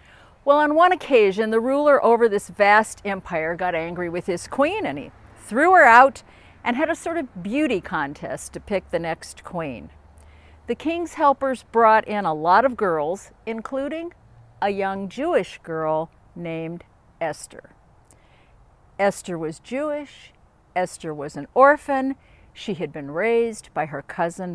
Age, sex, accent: 50-69, female, American